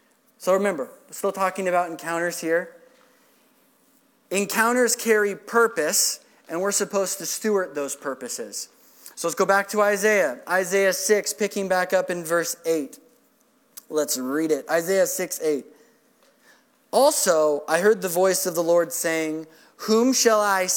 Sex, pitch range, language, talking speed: male, 180-230 Hz, English, 145 wpm